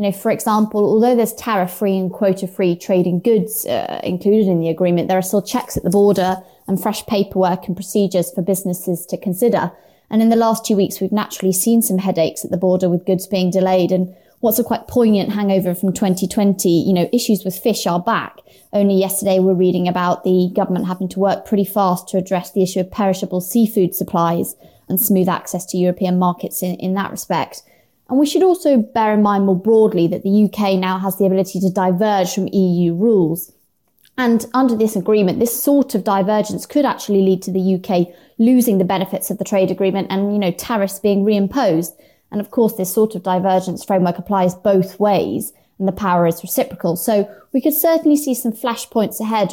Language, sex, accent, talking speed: English, female, British, 200 wpm